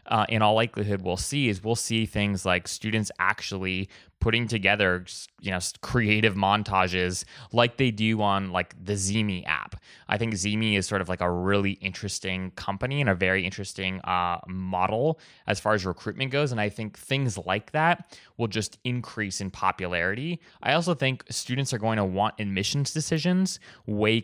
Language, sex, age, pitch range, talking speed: English, male, 20-39, 95-115 Hz, 175 wpm